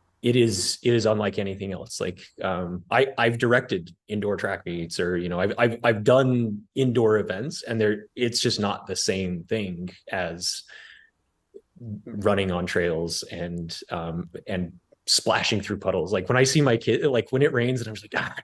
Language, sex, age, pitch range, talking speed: English, male, 30-49, 105-160 Hz, 185 wpm